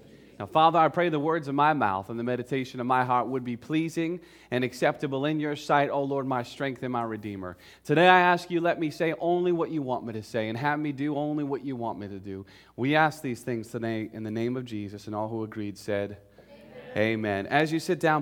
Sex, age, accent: male, 30-49, American